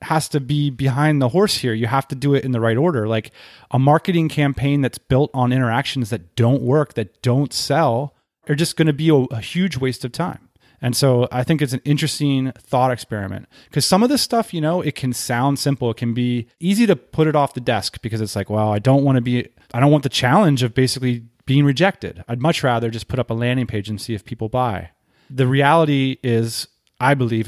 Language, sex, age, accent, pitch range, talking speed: English, male, 30-49, American, 120-160 Hz, 235 wpm